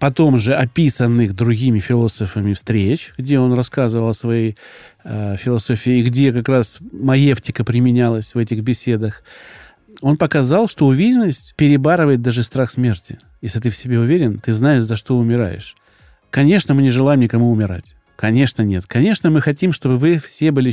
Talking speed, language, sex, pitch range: 155 wpm, Russian, male, 115-145 Hz